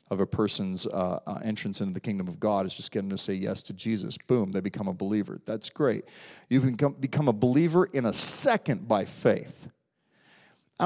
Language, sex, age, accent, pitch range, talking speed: English, male, 40-59, American, 100-130 Hz, 205 wpm